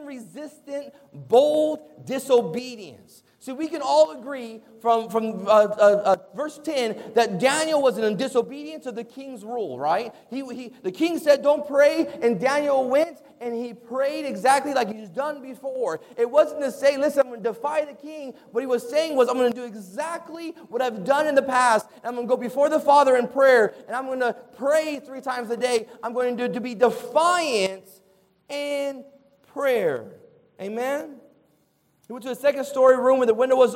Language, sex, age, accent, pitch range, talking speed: English, male, 30-49, American, 230-280 Hz, 195 wpm